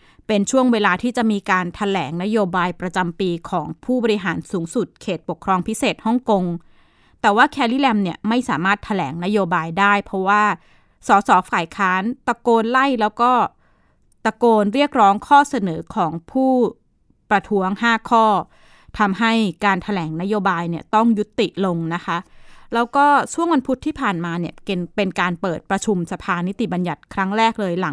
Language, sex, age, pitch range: Thai, female, 20-39, 180-230 Hz